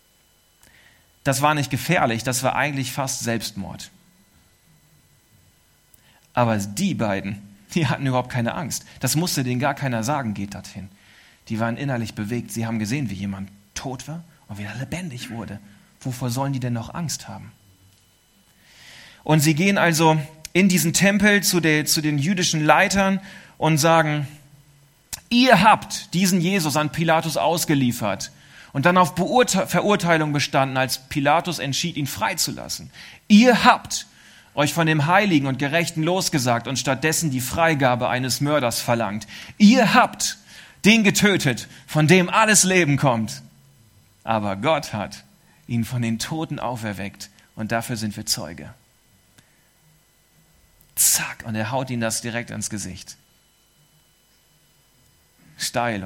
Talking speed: 135 wpm